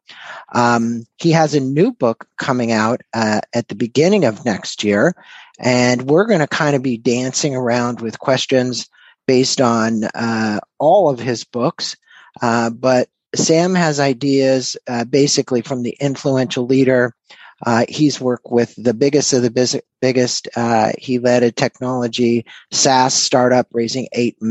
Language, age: English, 50-69